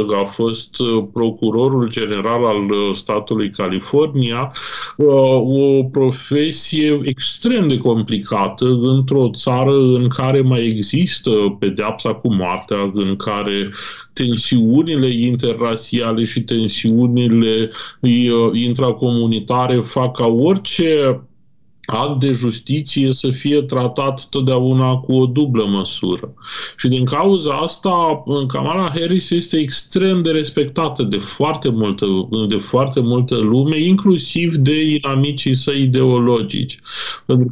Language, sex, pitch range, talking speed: Romanian, male, 115-140 Hz, 100 wpm